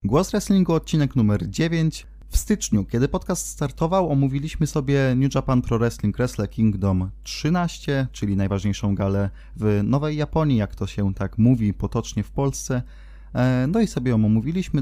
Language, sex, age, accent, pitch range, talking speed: Polish, male, 20-39, native, 105-135 Hz, 155 wpm